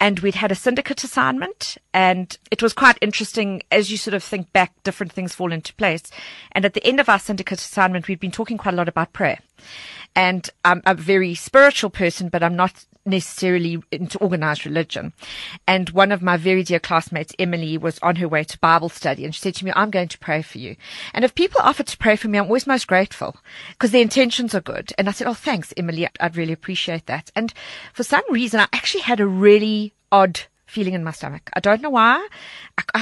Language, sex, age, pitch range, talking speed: English, female, 40-59, 175-225 Hz, 220 wpm